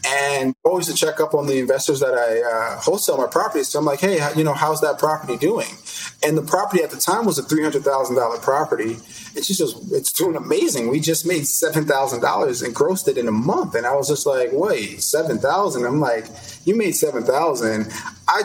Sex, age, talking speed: male, 30-49, 205 wpm